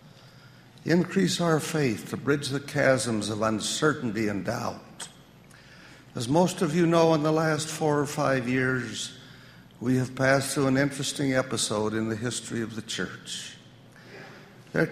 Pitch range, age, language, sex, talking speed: 125-155 Hz, 60-79, English, male, 150 wpm